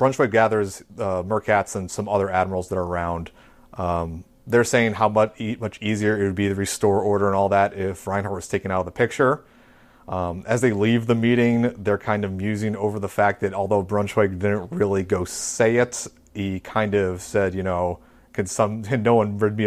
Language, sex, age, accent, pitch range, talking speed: English, male, 30-49, American, 95-110 Hz, 215 wpm